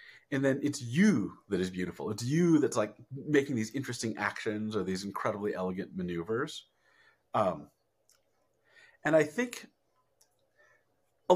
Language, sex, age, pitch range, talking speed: English, male, 40-59, 95-150 Hz, 130 wpm